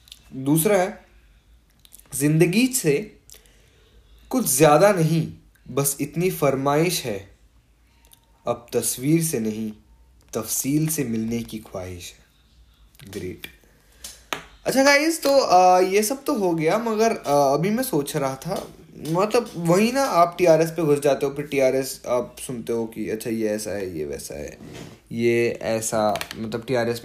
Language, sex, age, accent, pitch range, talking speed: Hindi, male, 20-39, native, 105-150 Hz, 160 wpm